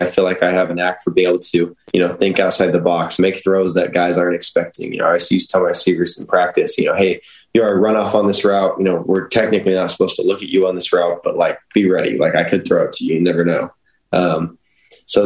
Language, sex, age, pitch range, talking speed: English, male, 10-29, 90-100 Hz, 280 wpm